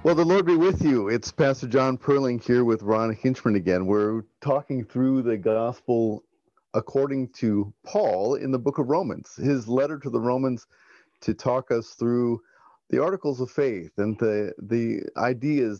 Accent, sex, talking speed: American, male, 170 wpm